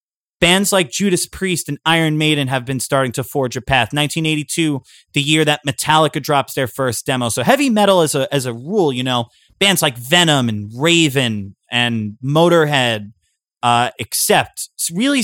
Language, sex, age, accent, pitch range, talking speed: English, male, 30-49, American, 125-160 Hz, 175 wpm